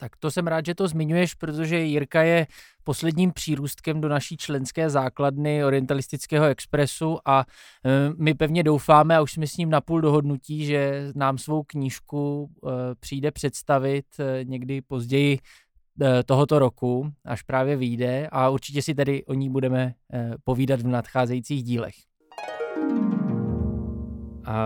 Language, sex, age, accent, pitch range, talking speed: Czech, male, 20-39, native, 130-155 Hz, 135 wpm